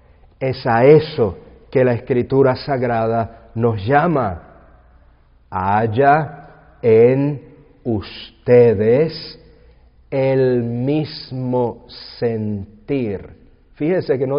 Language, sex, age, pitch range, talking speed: English, male, 50-69, 105-145 Hz, 75 wpm